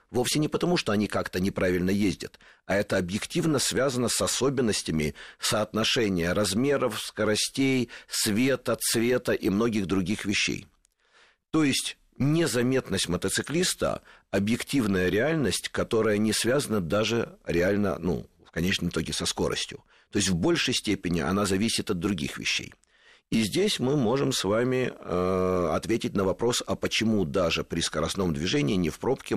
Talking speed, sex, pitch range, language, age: 140 wpm, male, 85-115 Hz, Russian, 50-69